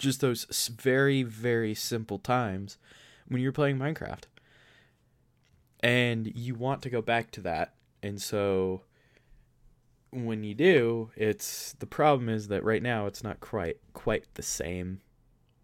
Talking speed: 140 wpm